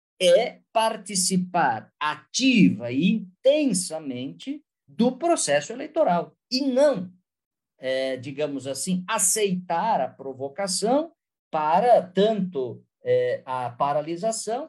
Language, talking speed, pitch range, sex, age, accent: Portuguese, 80 wpm, 150-225 Hz, male, 50-69, Brazilian